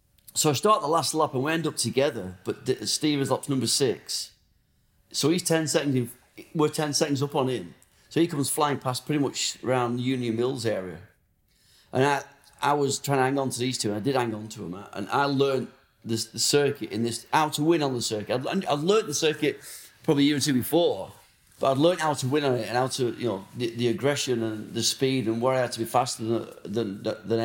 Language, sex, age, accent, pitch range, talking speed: English, male, 40-59, British, 115-145 Hz, 245 wpm